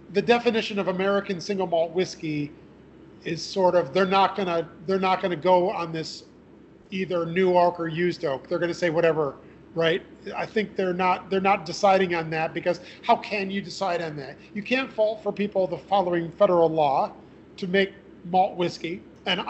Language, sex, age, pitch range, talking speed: English, male, 40-59, 170-195 Hz, 185 wpm